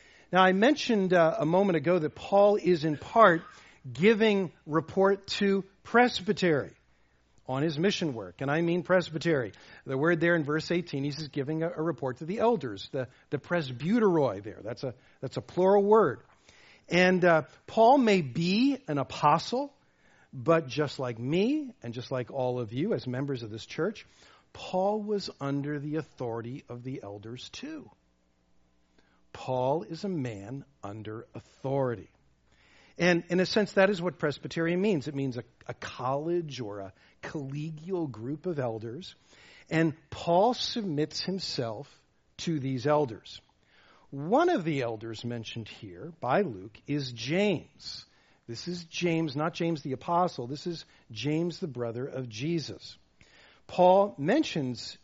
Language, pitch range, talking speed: English, 130-180 Hz, 150 wpm